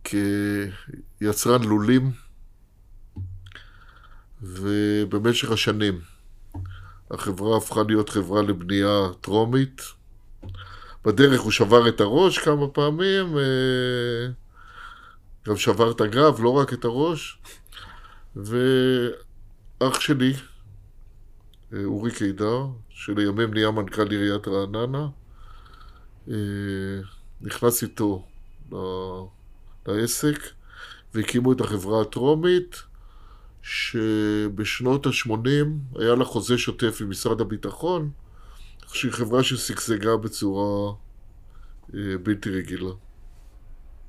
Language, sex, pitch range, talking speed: Hebrew, male, 100-125 Hz, 80 wpm